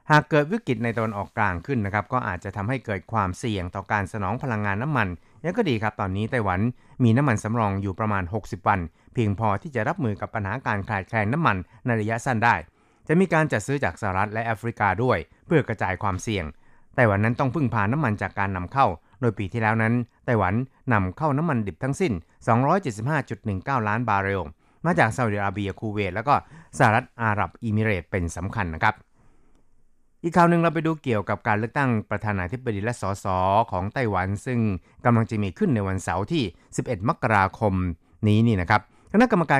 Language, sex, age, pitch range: Thai, male, 60-79, 100-125 Hz